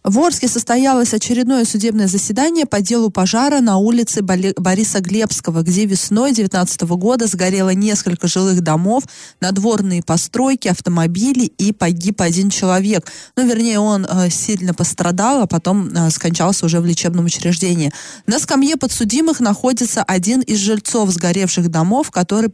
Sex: female